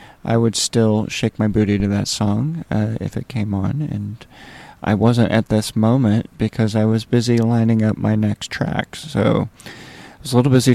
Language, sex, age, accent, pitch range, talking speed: English, male, 30-49, American, 105-120 Hz, 195 wpm